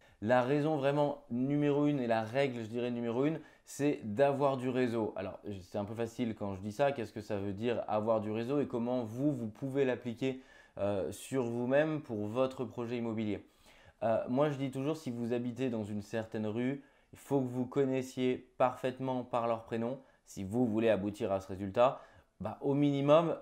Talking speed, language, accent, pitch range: 195 wpm, French, French, 110-140 Hz